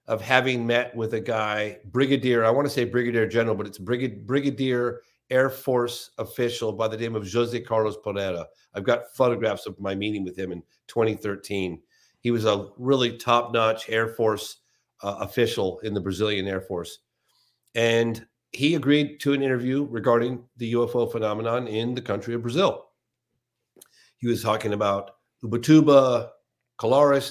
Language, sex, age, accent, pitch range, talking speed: English, male, 50-69, American, 110-130 Hz, 155 wpm